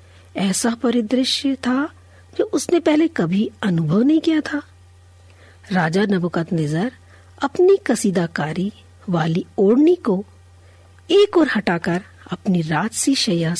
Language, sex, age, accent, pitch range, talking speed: Hindi, female, 50-69, native, 160-225 Hz, 100 wpm